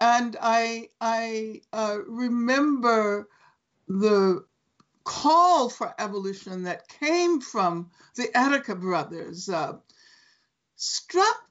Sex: female